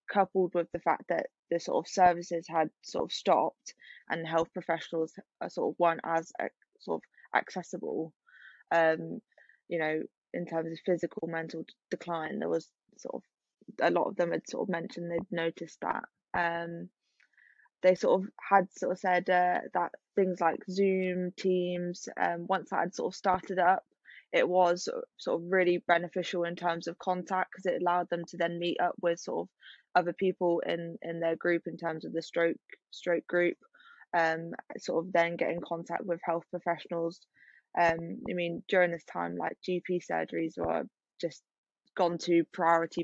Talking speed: 175 wpm